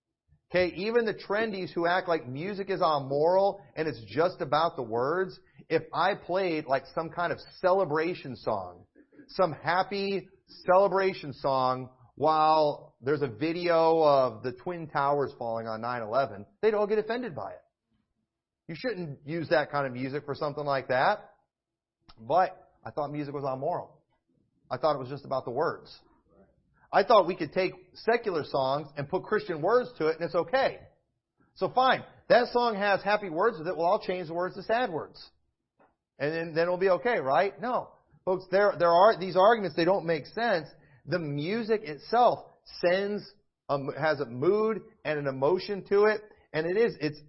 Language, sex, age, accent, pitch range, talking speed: English, male, 40-59, American, 145-195 Hz, 175 wpm